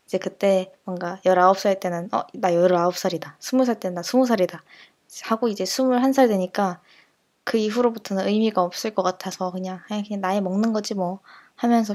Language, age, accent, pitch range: Korean, 20-39, native, 185-230 Hz